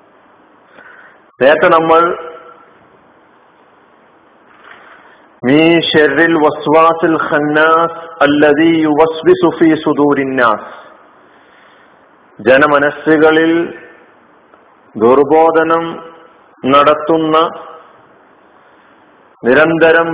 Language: Malayalam